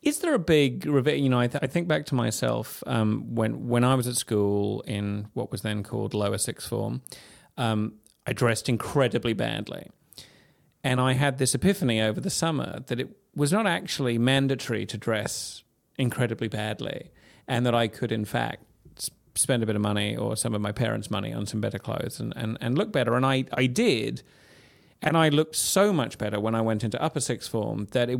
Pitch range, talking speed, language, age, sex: 110-135 Hz, 205 wpm, English, 30-49, male